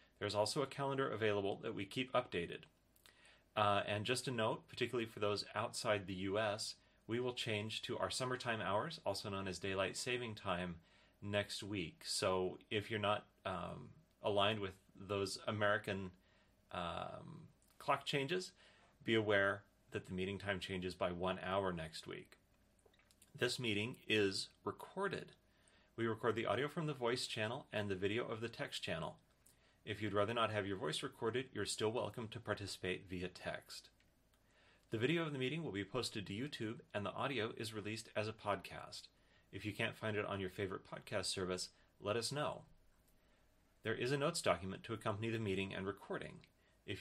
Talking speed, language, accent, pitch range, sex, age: 175 wpm, English, American, 95-120 Hz, male, 30-49